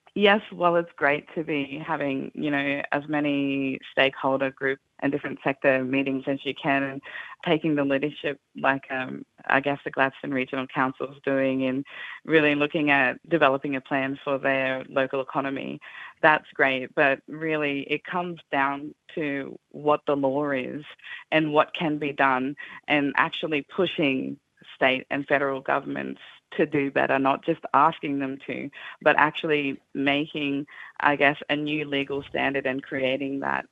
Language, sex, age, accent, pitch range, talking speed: English, female, 20-39, Australian, 135-150 Hz, 160 wpm